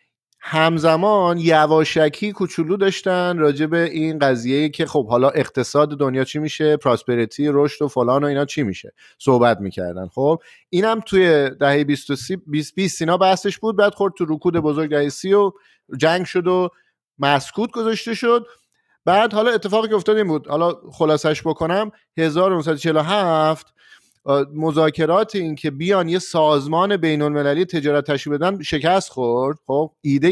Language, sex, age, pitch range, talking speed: Persian, male, 30-49, 140-175 Hz, 135 wpm